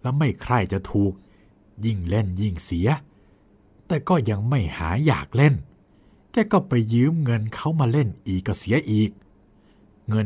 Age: 60-79